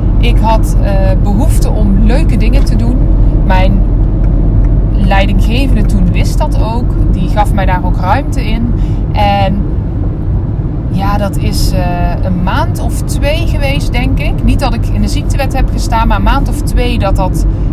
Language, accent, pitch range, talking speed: Dutch, Dutch, 100-110 Hz, 165 wpm